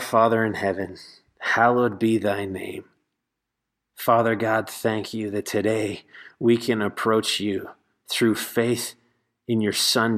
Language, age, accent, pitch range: English, 30-49, American, 110-125 Hz